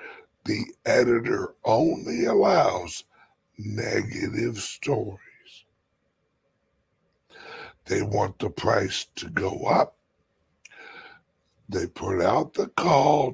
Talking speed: 80 wpm